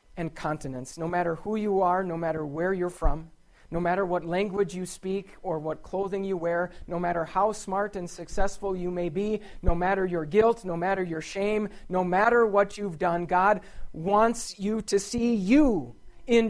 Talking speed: 190 wpm